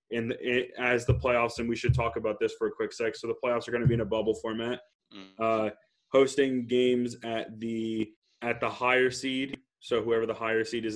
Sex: male